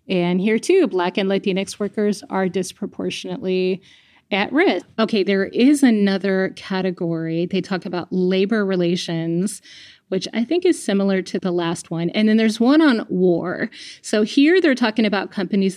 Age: 30-49